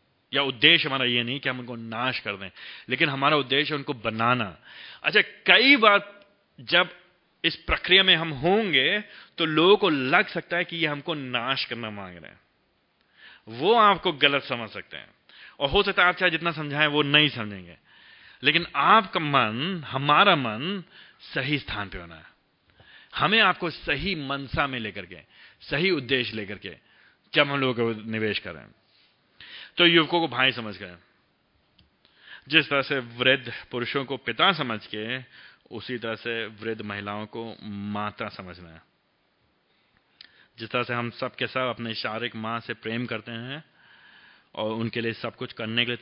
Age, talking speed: 30-49, 165 wpm